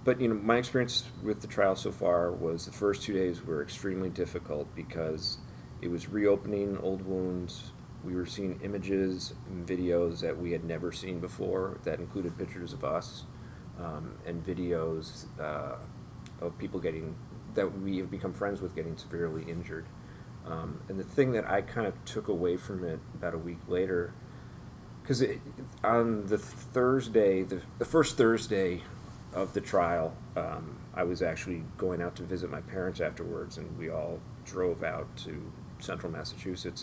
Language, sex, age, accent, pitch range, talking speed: English, male, 40-59, American, 90-115 Hz, 170 wpm